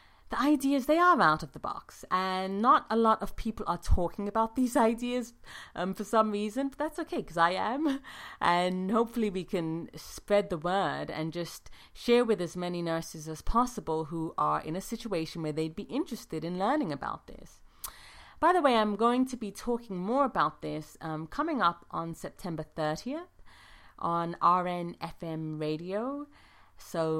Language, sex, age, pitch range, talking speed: English, female, 30-49, 160-225 Hz, 175 wpm